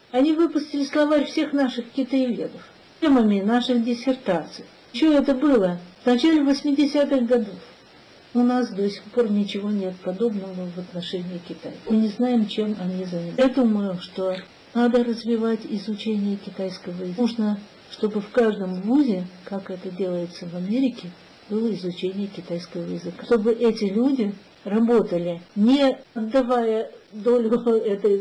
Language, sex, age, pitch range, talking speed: Russian, female, 50-69, 185-245 Hz, 135 wpm